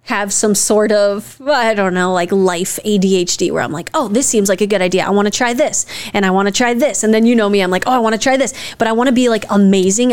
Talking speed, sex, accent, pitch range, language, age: 300 wpm, female, American, 185-215 Hz, English, 20-39